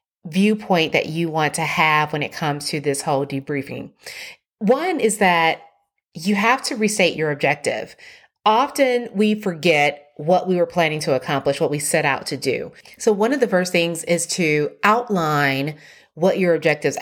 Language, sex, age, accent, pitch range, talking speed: English, female, 30-49, American, 155-195 Hz, 175 wpm